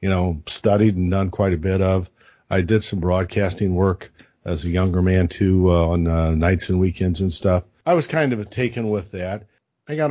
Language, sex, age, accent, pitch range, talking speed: English, male, 50-69, American, 90-110 Hz, 215 wpm